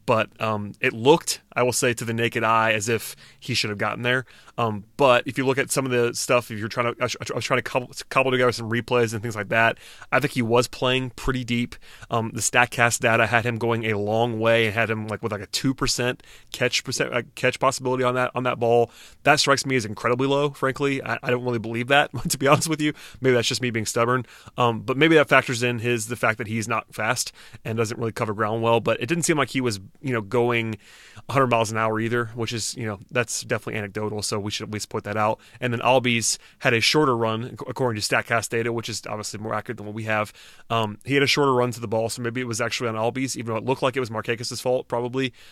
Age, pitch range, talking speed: 30-49, 110-130 Hz, 265 wpm